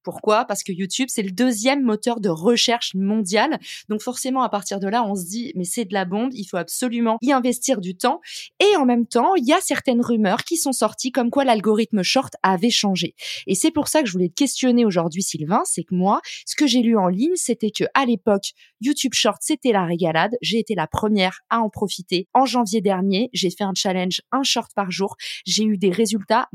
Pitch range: 195-255 Hz